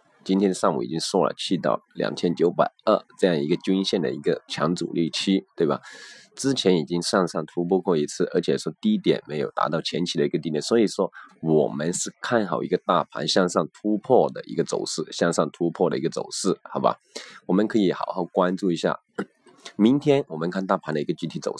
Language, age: Chinese, 20-39